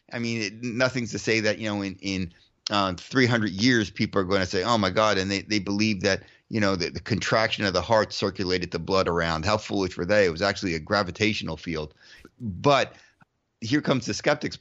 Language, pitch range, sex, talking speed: English, 95-120 Hz, male, 220 wpm